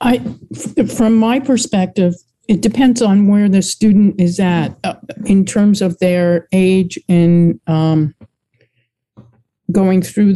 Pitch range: 170-230 Hz